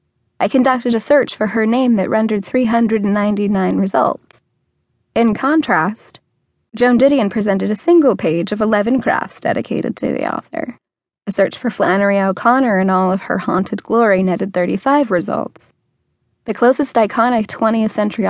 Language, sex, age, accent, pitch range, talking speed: English, female, 20-39, American, 200-245 Hz, 155 wpm